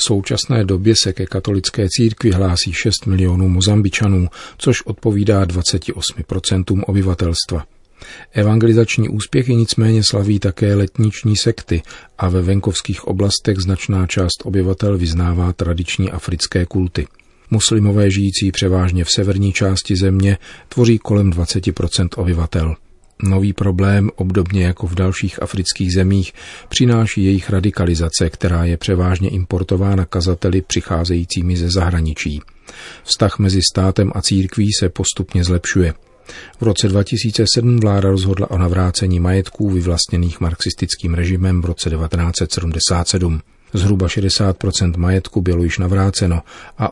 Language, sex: Czech, male